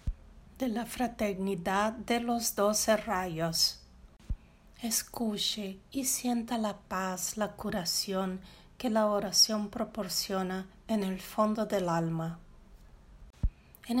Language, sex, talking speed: Portuguese, female, 105 wpm